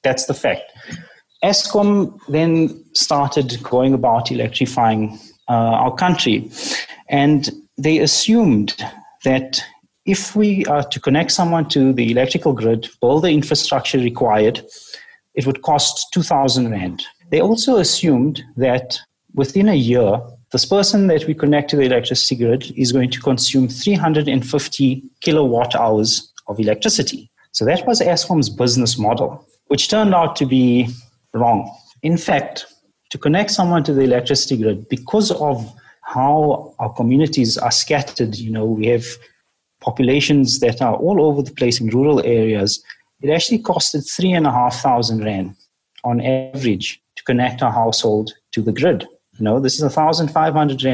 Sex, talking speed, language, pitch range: male, 145 wpm, English, 120-155 Hz